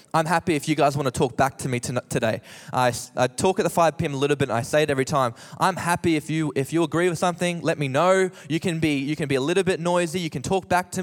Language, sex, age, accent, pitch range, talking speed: English, male, 20-39, Australian, 135-180 Hz, 300 wpm